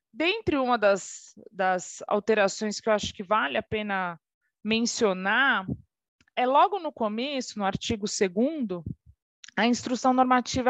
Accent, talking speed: Brazilian, 130 wpm